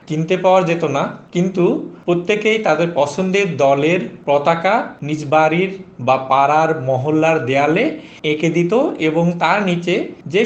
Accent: native